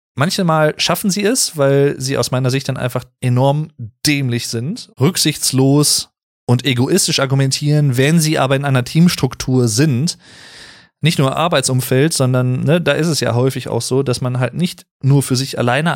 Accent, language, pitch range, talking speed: German, German, 130-160 Hz, 165 wpm